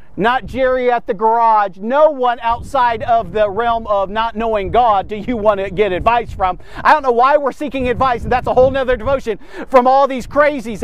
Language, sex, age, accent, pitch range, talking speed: English, male, 50-69, American, 220-275 Hz, 215 wpm